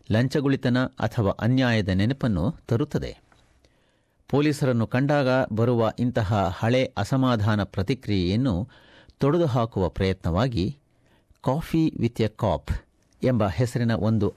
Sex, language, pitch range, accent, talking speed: male, Kannada, 100-140 Hz, native, 90 wpm